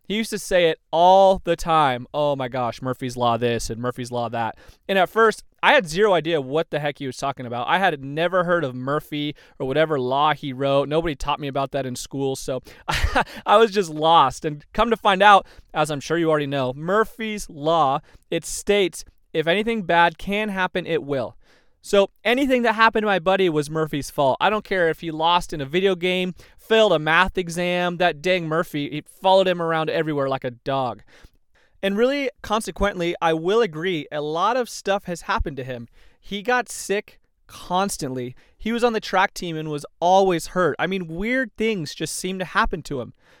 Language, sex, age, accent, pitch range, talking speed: English, male, 30-49, American, 145-195 Hz, 210 wpm